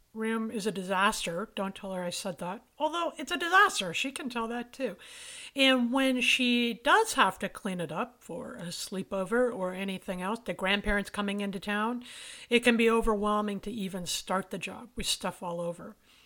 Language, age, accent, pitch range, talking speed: English, 50-69, American, 190-235 Hz, 190 wpm